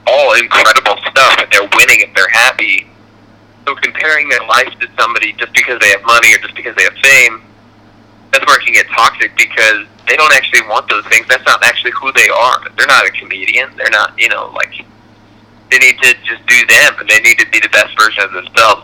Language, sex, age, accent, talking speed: English, male, 30-49, American, 225 wpm